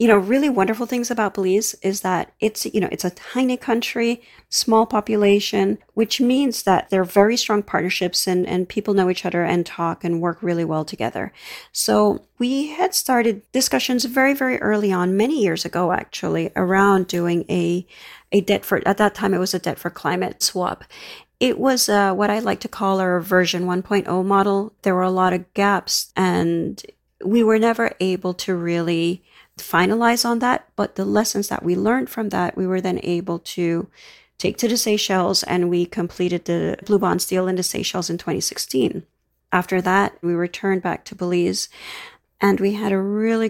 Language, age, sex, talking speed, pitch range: English, 40-59, female, 190 wpm, 180-220 Hz